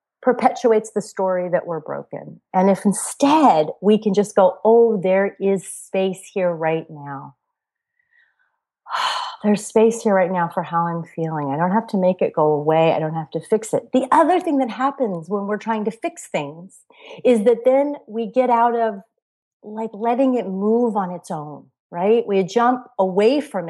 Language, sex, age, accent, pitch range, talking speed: English, female, 40-59, American, 170-240 Hz, 185 wpm